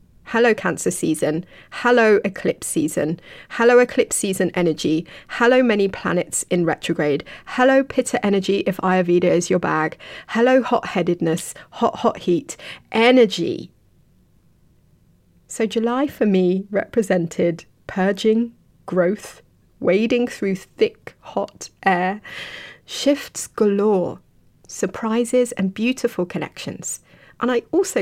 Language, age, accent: English, 30-49, British